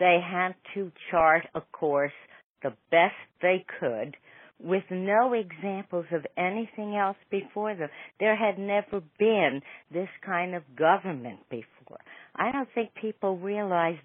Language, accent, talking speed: English, American, 135 wpm